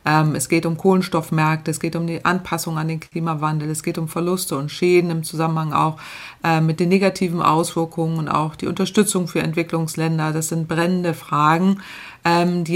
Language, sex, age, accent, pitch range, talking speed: German, female, 30-49, German, 155-175 Hz, 170 wpm